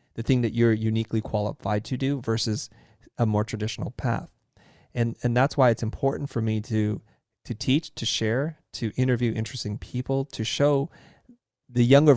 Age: 30-49